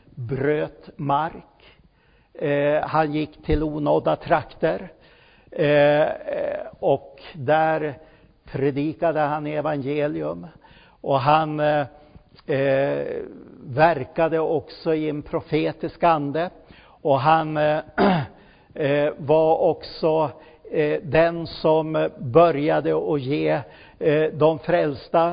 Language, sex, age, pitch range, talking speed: Swedish, male, 60-79, 150-170 Hz, 75 wpm